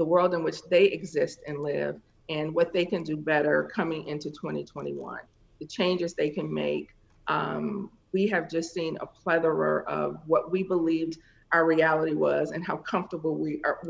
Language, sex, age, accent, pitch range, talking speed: English, female, 40-59, American, 150-175 Hz, 175 wpm